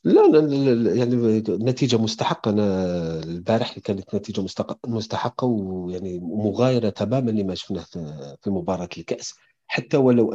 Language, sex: Arabic, male